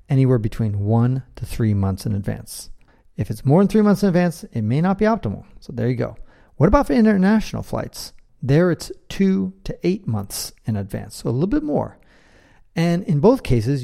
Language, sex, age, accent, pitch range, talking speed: English, male, 40-59, American, 110-155 Hz, 205 wpm